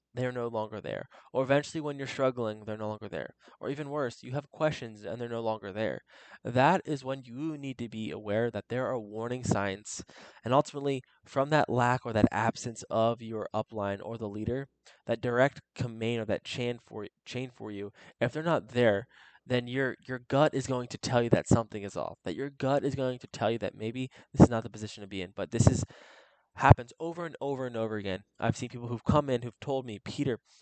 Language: English